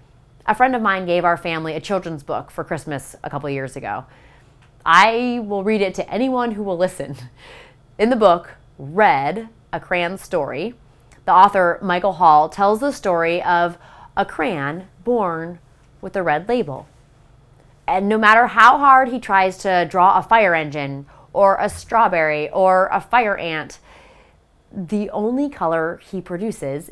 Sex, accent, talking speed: female, American, 160 wpm